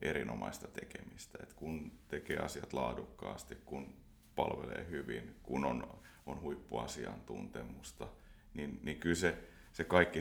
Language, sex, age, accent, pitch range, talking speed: Finnish, male, 30-49, native, 75-90 Hz, 110 wpm